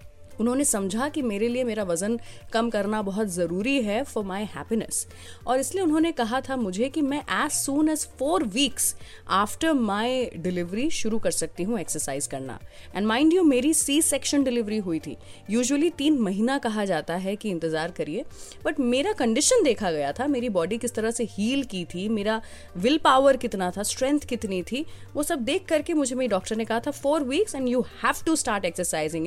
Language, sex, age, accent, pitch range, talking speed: Hindi, female, 30-49, native, 195-290 Hz, 195 wpm